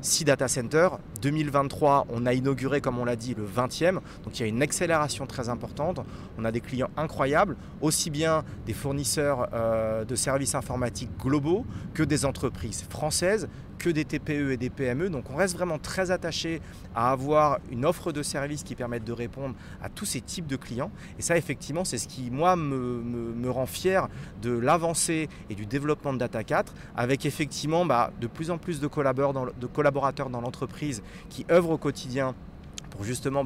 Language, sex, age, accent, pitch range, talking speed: French, male, 30-49, French, 125-165 Hz, 190 wpm